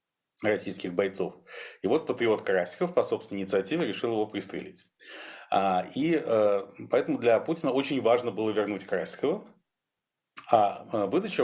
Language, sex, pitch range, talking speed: Russian, male, 105-130 Hz, 120 wpm